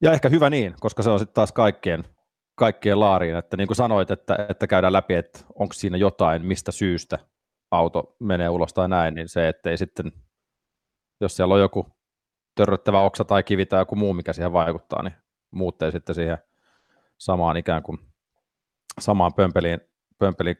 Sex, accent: male, native